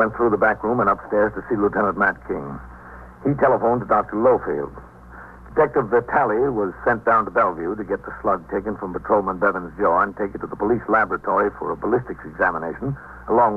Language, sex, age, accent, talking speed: English, male, 60-79, American, 200 wpm